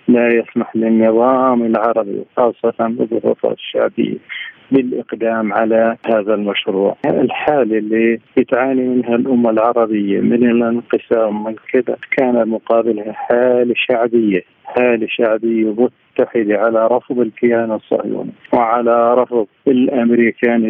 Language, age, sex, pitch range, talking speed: Arabic, 40-59, male, 110-125 Hz, 100 wpm